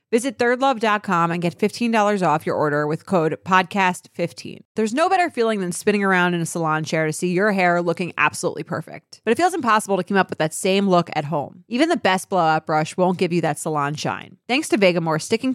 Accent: American